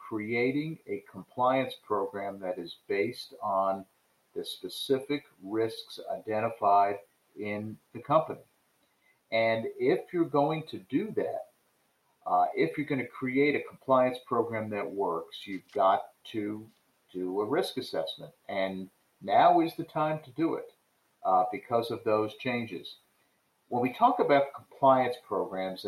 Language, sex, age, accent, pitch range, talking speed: English, male, 50-69, American, 100-145 Hz, 135 wpm